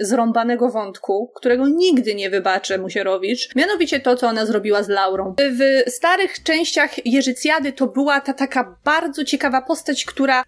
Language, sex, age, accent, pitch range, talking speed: Polish, female, 30-49, native, 265-320 Hz, 150 wpm